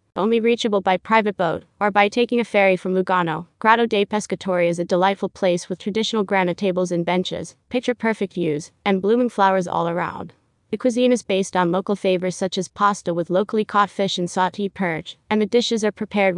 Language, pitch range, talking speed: English, 180-210 Hz, 200 wpm